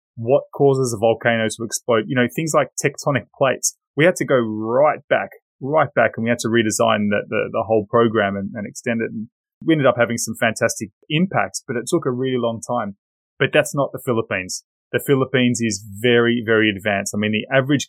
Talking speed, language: 215 wpm, English